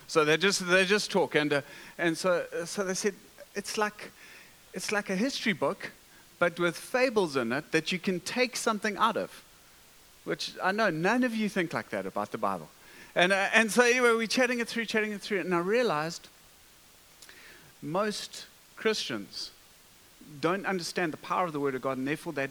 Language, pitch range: English, 140-200 Hz